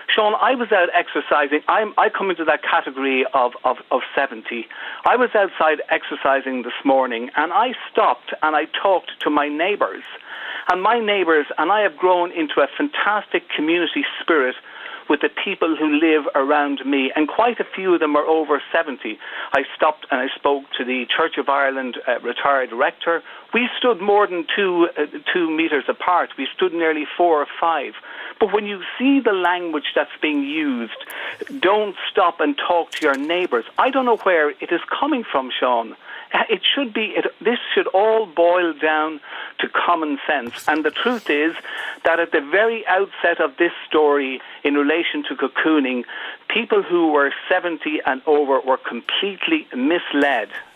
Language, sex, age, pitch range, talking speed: English, male, 60-79, 150-215 Hz, 175 wpm